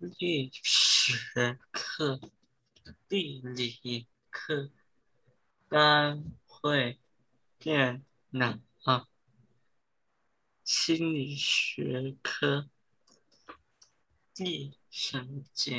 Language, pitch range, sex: Chinese, 125-150 Hz, male